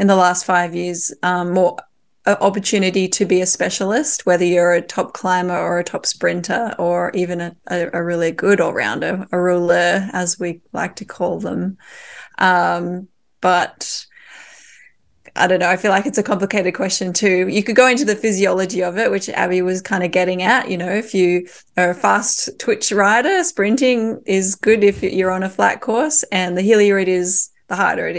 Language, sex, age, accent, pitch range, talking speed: English, female, 20-39, Australian, 180-210 Hz, 195 wpm